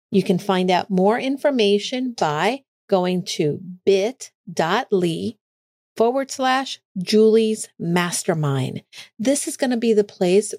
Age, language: 50-69, English